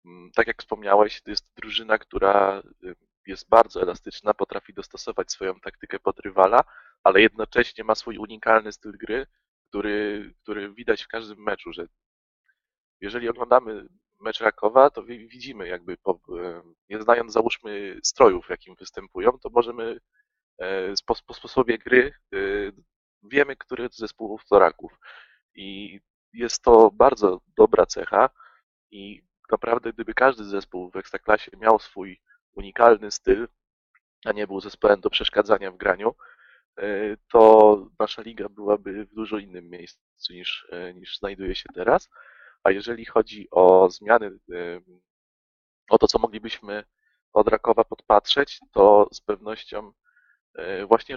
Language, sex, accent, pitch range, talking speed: Polish, male, native, 100-130 Hz, 125 wpm